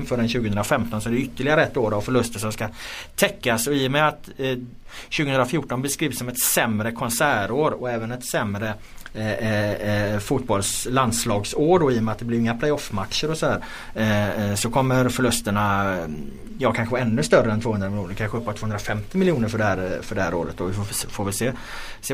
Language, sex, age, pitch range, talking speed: Swedish, male, 30-49, 105-130 Hz, 200 wpm